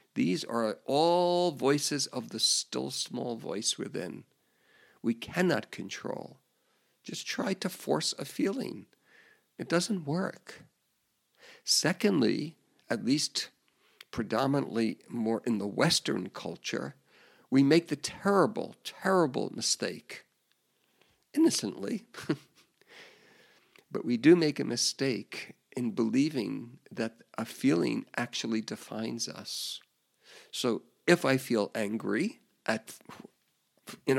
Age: 50-69